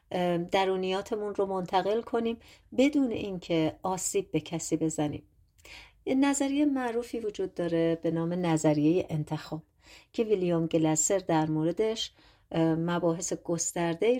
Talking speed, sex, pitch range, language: 105 wpm, female, 165-225 Hz, Persian